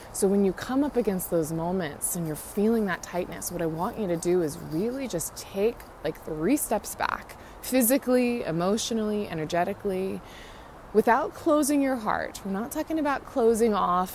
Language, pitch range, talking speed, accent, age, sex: English, 170-220 Hz, 170 wpm, American, 20-39, female